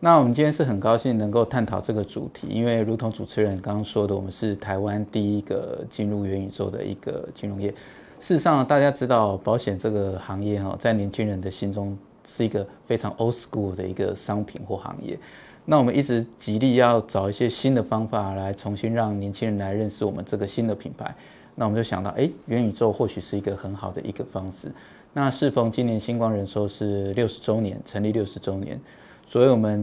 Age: 20-39